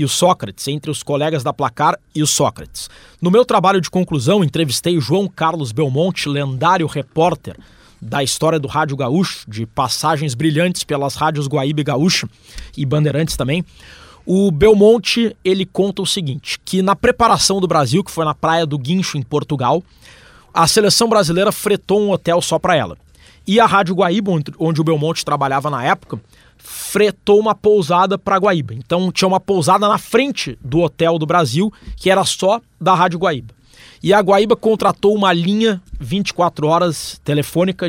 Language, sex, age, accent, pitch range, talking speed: Portuguese, male, 20-39, Brazilian, 150-195 Hz, 170 wpm